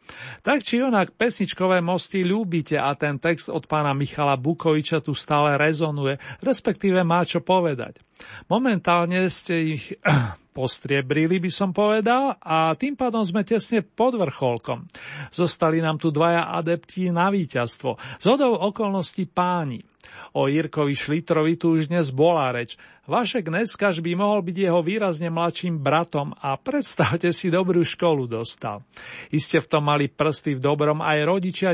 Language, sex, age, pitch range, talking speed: Slovak, male, 40-59, 150-190 Hz, 145 wpm